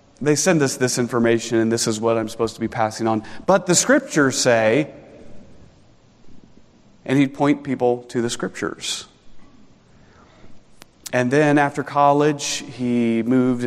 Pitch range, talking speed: 115-145 Hz, 140 wpm